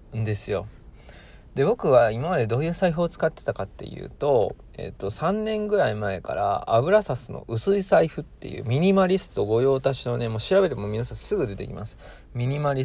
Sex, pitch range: male, 105-155 Hz